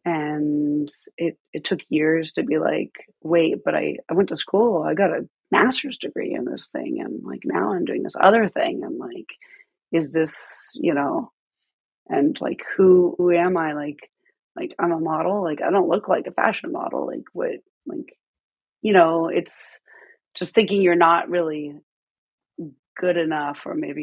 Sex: female